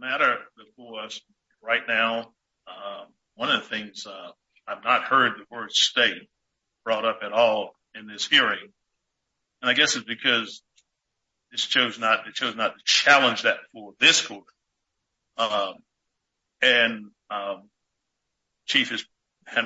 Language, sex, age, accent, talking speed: English, male, 60-79, American, 145 wpm